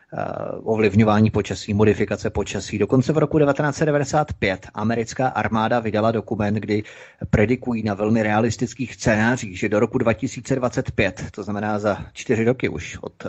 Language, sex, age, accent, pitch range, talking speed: Czech, male, 30-49, native, 105-125 Hz, 130 wpm